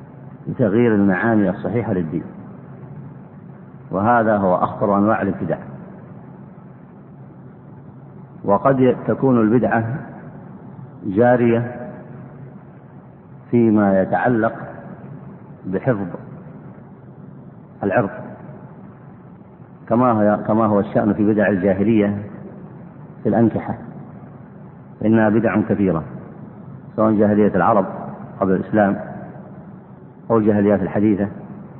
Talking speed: 65 wpm